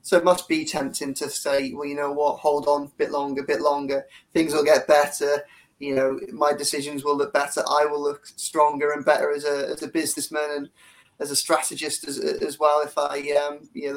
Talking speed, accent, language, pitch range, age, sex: 230 wpm, British, English, 140-155 Hz, 20-39, male